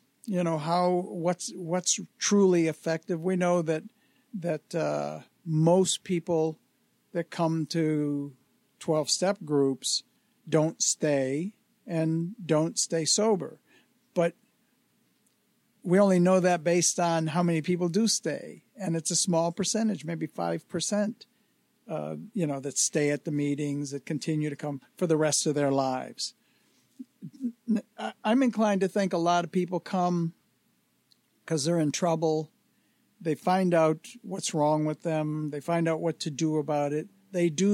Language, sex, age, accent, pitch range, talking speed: English, male, 60-79, American, 155-185 Hz, 150 wpm